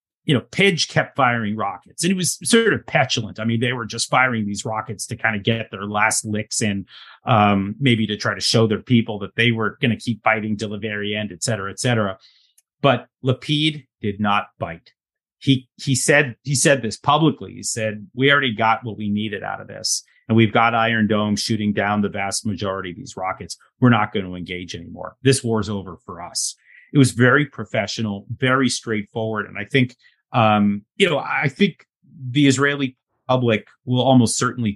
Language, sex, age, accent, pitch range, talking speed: English, male, 30-49, American, 100-125 Hz, 200 wpm